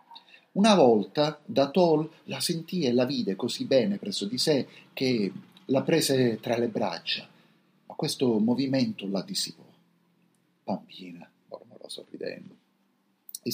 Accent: native